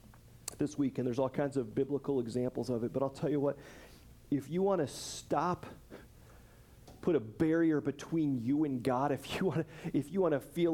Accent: American